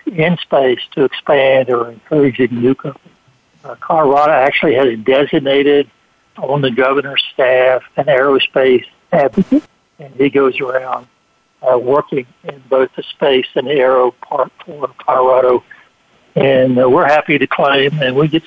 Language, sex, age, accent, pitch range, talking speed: English, male, 60-79, American, 130-155 Hz, 145 wpm